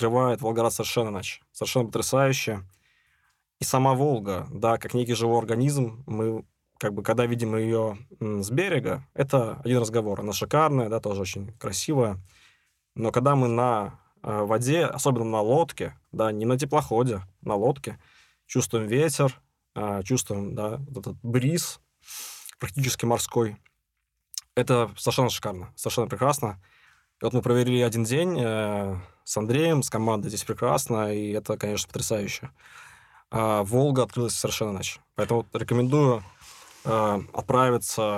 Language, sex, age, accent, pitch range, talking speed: Russian, male, 20-39, native, 110-130 Hz, 130 wpm